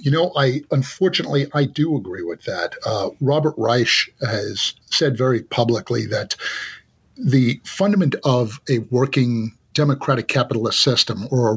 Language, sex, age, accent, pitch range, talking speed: English, male, 50-69, American, 120-145 Hz, 140 wpm